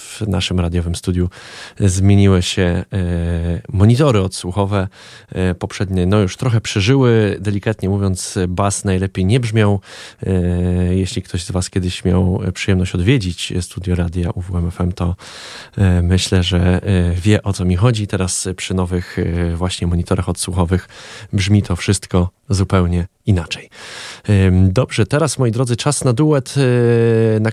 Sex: male